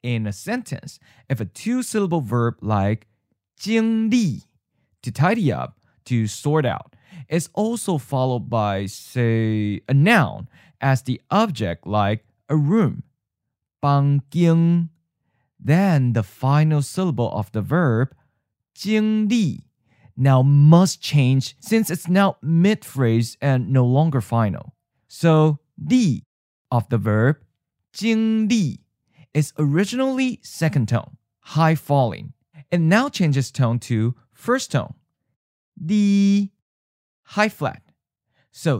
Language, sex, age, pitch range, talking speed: English, male, 20-39, 120-180 Hz, 110 wpm